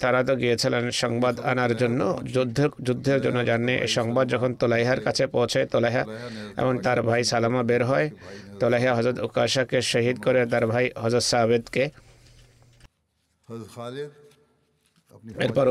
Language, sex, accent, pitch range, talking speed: Bengali, male, native, 120-130 Hz, 60 wpm